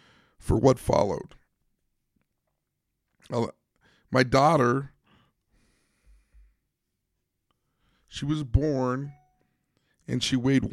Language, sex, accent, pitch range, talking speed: English, male, American, 110-135 Hz, 60 wpm